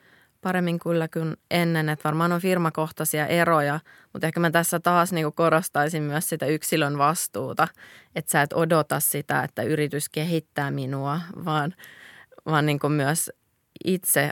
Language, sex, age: Finnish, female, 20-39